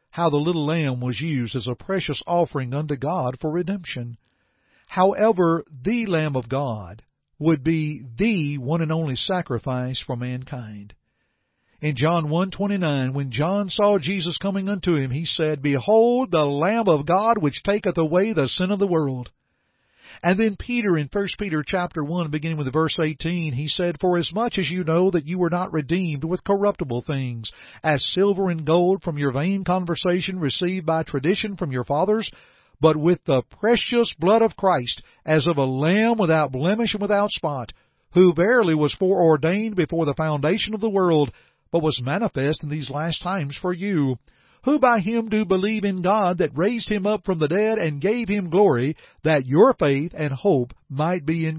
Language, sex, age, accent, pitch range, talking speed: English, male, 50-69, American, 145-195 Hz, 180 wpm